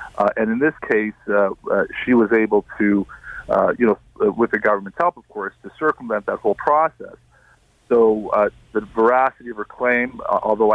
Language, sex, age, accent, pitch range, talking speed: English, male, 40-59, American, 105-120 Hz, 195 wpm